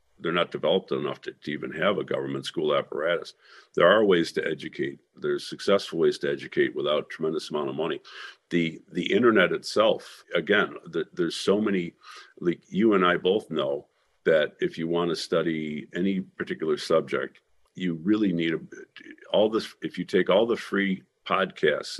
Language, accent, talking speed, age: English, American, 175 wpm, 50-69